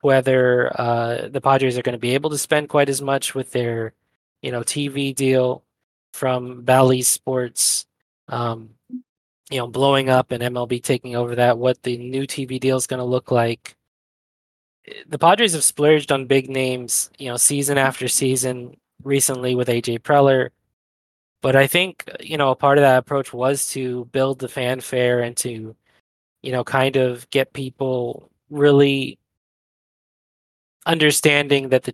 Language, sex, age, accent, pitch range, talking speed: English, male, 20-39, American, 120-140 Hz, 160 wpm